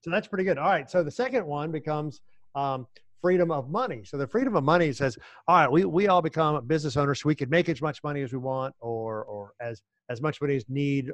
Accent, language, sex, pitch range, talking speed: American, English, male, 120-160 Hz, 255 wpm